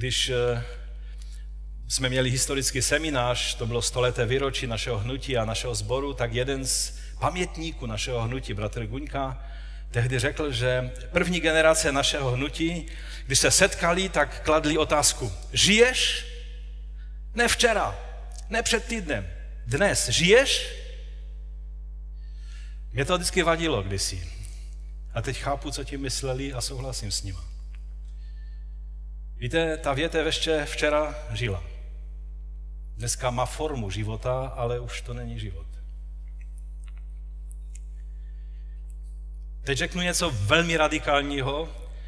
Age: 40-59